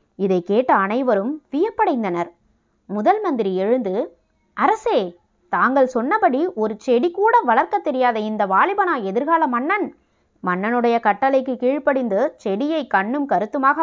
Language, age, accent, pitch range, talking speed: Tamil, 20-39, native, 195-290 Hz, 105 wpm